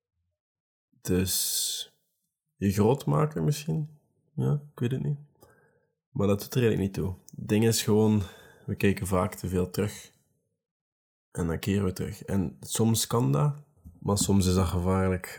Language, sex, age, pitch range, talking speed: Dutch, male, 20-39, 100-130 Hz, 160 wpm